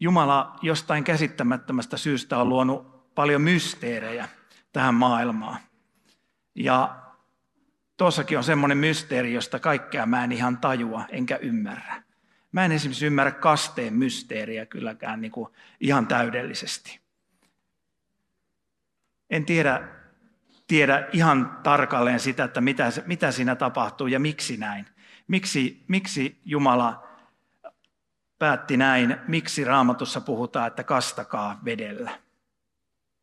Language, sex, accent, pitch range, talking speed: Finnish, male, native, 120-165 Hz, 105 wpm